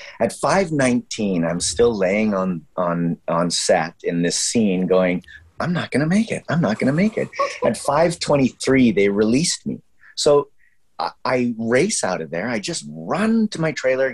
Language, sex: English, male